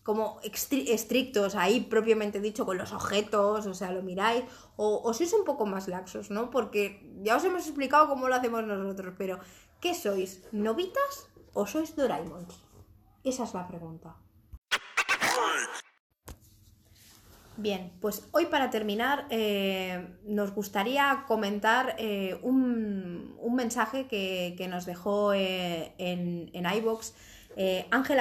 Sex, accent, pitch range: female, Spanish, 185-250 Hz